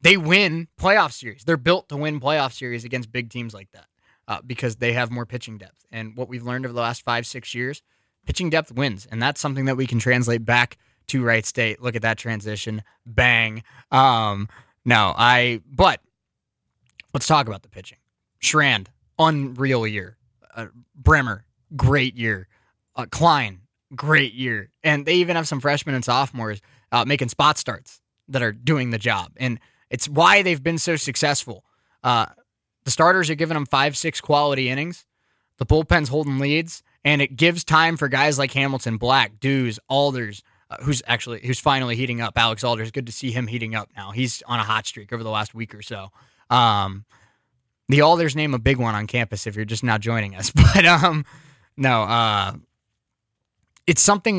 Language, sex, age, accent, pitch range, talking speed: English, male, 20-39, American, 115-145 Hz, 185 wpm